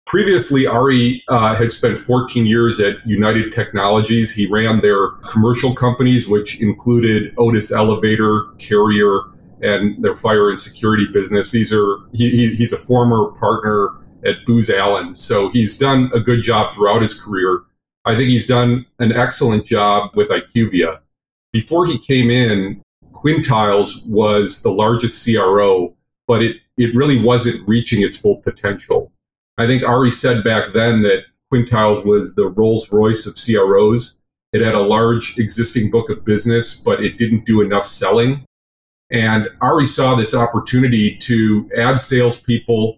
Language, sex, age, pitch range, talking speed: English, male, 40-59, 105-120 Hz, 150 wpm